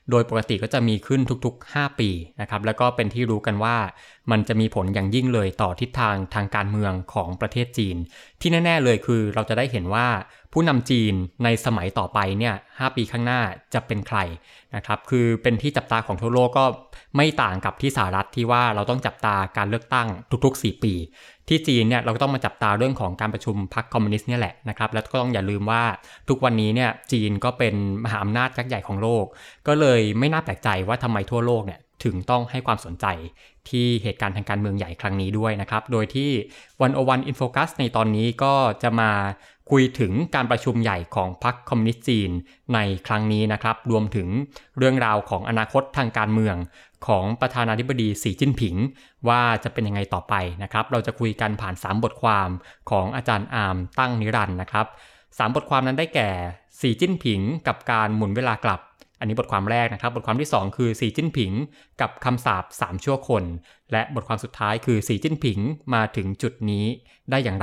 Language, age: Thai, 20-39